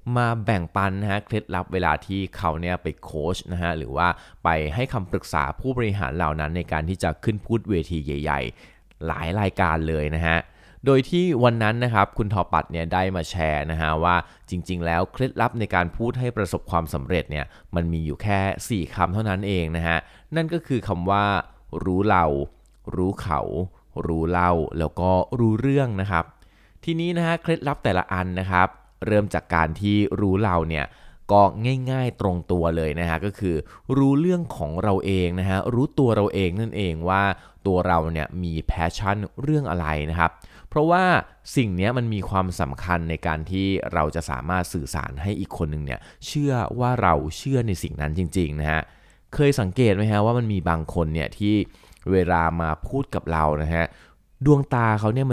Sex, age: male, 20-39